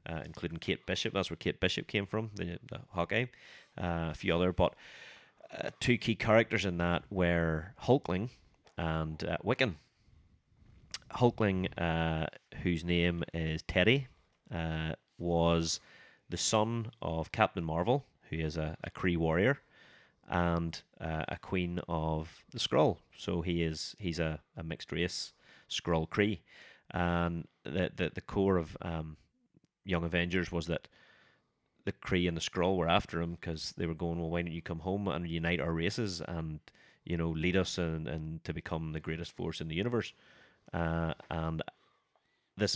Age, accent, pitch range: 30-49, British, 80-95 Hz